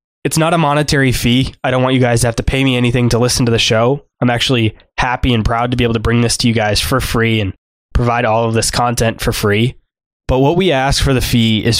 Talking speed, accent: 270 wpm, American